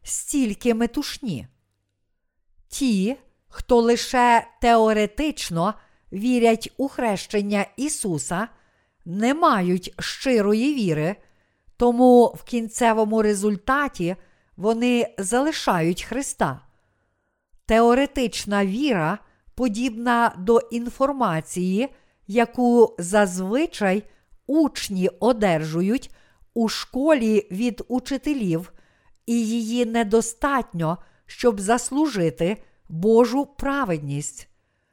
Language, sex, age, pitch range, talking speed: Ukrainian, female, 50-69, 190-250 Hz, 70 wpm